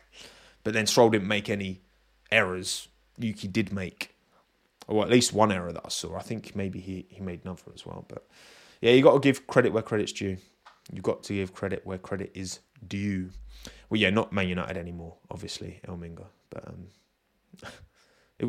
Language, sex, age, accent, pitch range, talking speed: English, male, 20-39, British, 95-125 Hz, 190 wpm